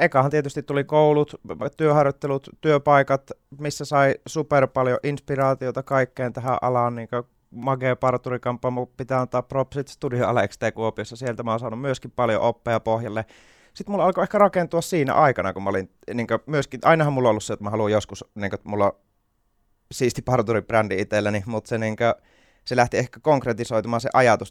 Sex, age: male, 30-49